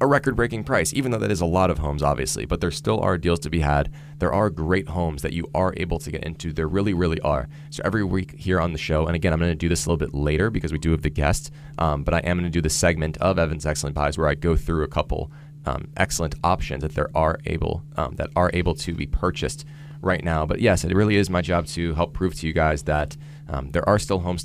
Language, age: English, 20-39